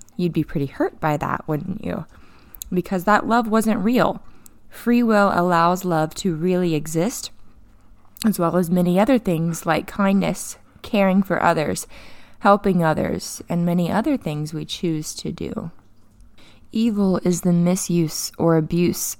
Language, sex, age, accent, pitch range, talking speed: English, female, 20-39, American, 155-180 Hz, 145 wpm